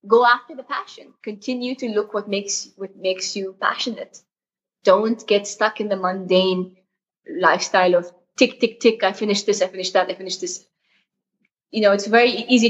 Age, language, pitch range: 20-39, English, 180-215 Hz